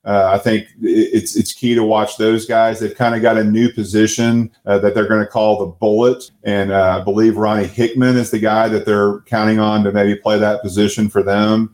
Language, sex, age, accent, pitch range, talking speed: English, male, 30-49, American, 100-120 Hz, 230 wpm